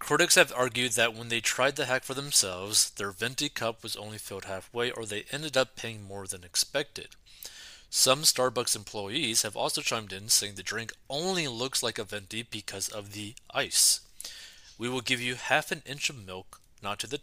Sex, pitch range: male, 105-130 Hz